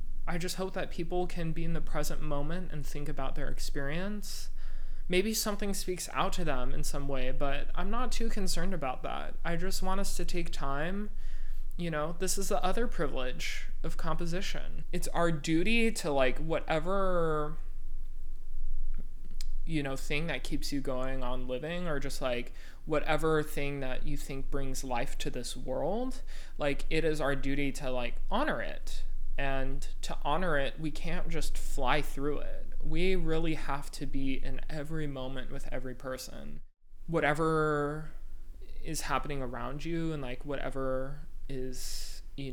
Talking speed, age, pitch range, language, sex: 165 wpm, 20-39, 130-170 Hz, English, male